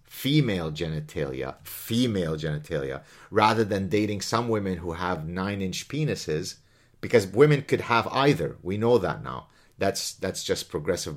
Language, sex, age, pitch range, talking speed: English, male, 30-49, 95-130 Hz, 140 wpm